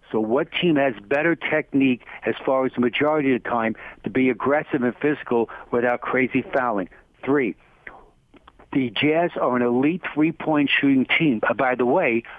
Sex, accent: male, American